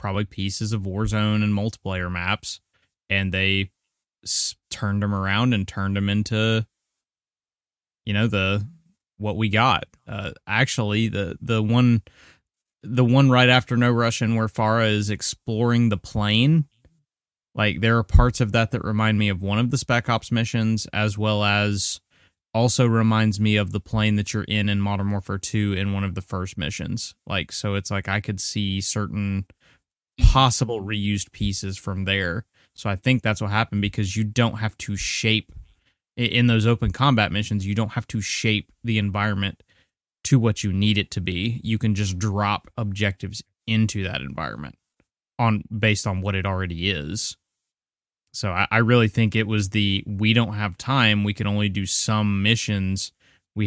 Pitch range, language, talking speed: 100-115 Hz, English, 175 wpm